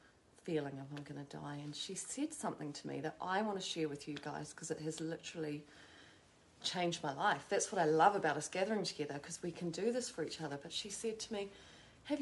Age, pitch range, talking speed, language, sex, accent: 30-49, 155-205 Hz, 240 wpm, English, female, Australian